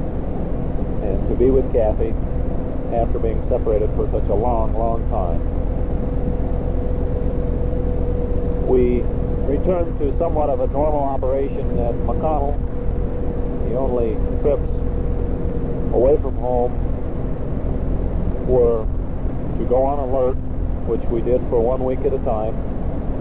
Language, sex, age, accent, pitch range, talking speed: English, male, 50-69, American, 85-125 Hz, 115 wpm